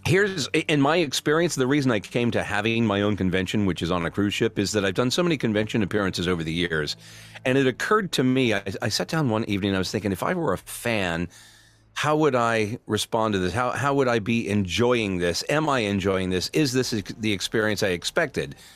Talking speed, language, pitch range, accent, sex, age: 230 wpm, English, 95-120 Hz, American, male, 40-59